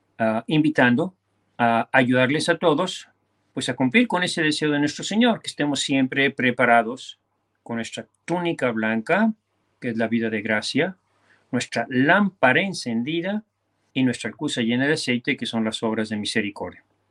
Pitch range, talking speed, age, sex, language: 115-150 Hz, 155 wpm, 50-69, male, Spanish